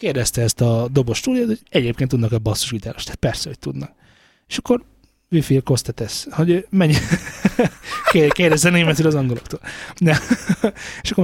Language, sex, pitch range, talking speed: Hungarian, male, 110-165 Hz, 140 wpm